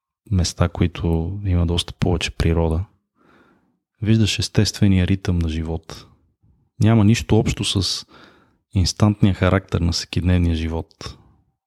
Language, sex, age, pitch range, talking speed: Bulgarian, male, 20-39, 85-105 Hz, 105 wpm